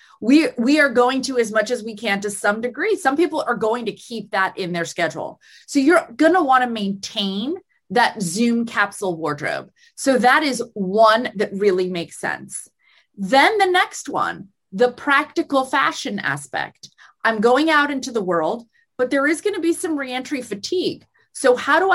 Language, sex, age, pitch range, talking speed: English, female, 20-39, 195-275 Hz, 185 wpm